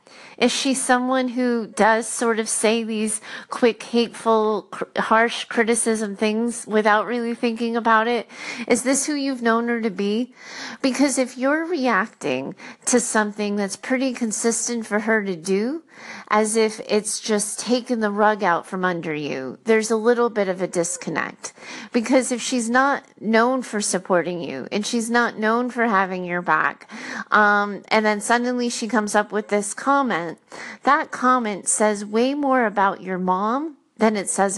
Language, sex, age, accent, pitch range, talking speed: English, female, 30-49, American, 195-245 Hz, 165 wpm